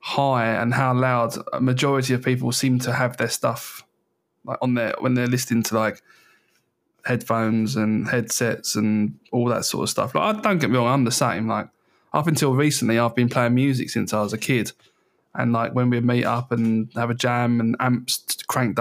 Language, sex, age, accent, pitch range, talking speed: English, male, 20-39, British, 120-135 Hz, 205 wpm